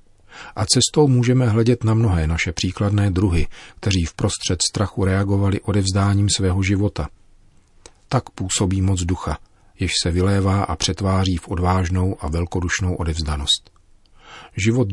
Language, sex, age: Czech, male, 40-59